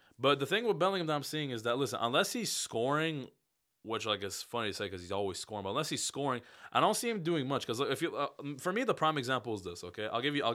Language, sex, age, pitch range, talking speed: English, male, 20-39, 110-145 Hz, 290 wpm